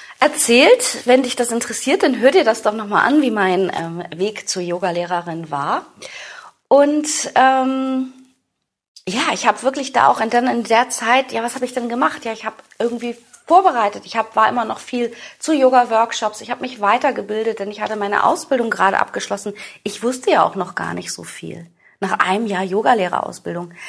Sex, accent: female, German